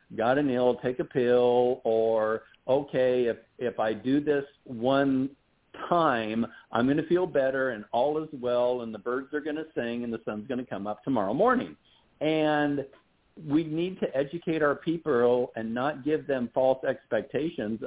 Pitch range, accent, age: 110-145 Hz, American, 50-69